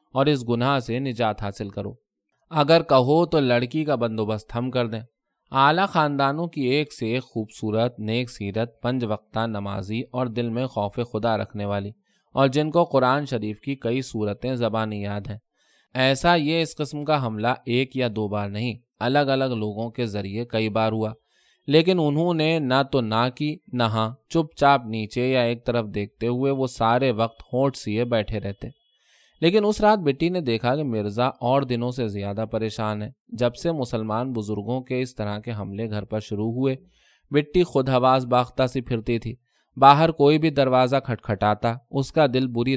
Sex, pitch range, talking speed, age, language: male, 110-140 Hz, 180 wpm, 20-39, Urdu